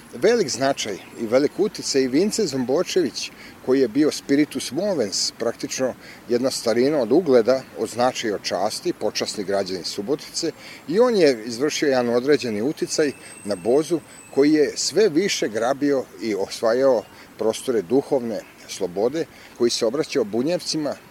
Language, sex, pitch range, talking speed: Croatian, male, 115-155 Hz, 135 wpm